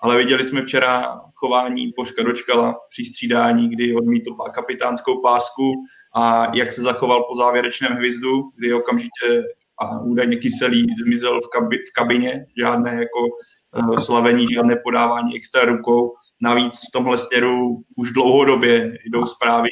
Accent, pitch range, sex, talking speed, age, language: native, 120-135 Hz, male, 140 wpm, 20-39, Czech